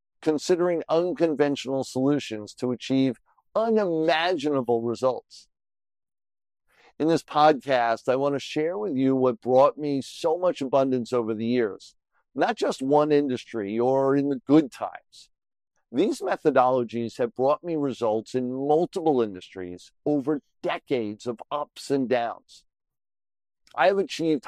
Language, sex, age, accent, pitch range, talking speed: English, male, 50-69, American, 125-155 Hz, 125 wpm